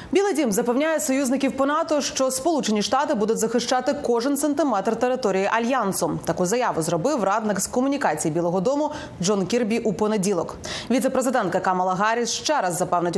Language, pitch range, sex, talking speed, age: Ukrainian, 190-265 Hz, female, 150 wpm, 30-49